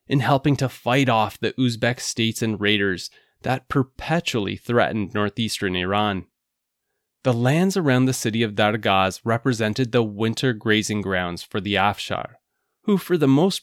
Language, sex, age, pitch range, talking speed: English, male, 20-39, 110-140 Hz, 150 wpm